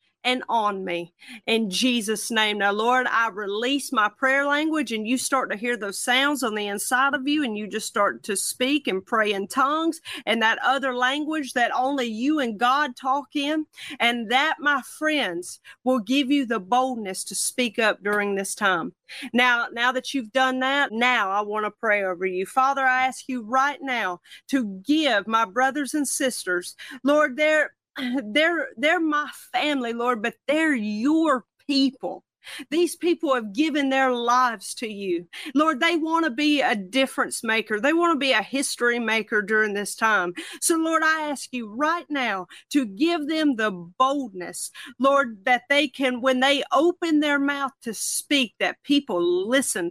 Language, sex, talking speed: English, female, 180 wpm